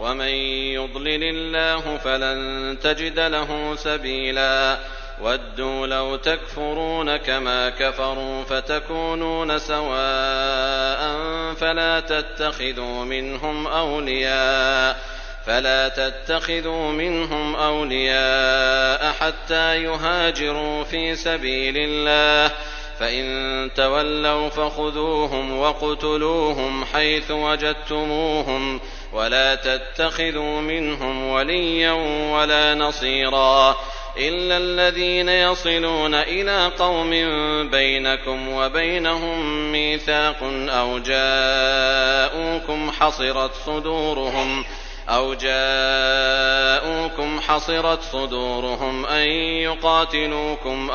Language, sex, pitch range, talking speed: Arabic, male, 135-160 Hz, 65 wpm